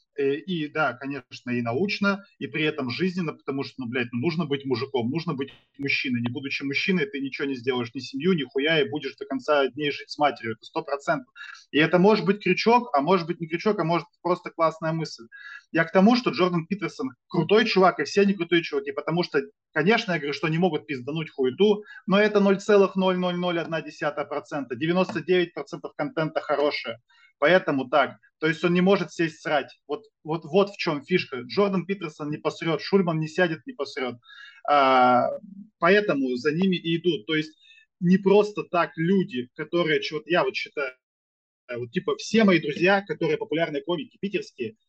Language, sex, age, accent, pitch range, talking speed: Russian, male, 20-39, native, 145-190 Hz, 180 wpm